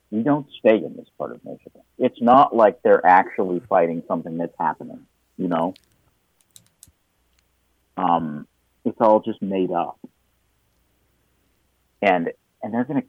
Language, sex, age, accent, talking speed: English, male, 50-69, American, 140 wpm